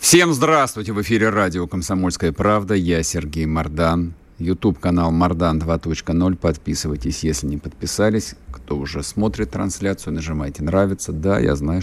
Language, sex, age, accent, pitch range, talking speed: Russian, male, 50-69, native, 80-110 Hz, 135 wpm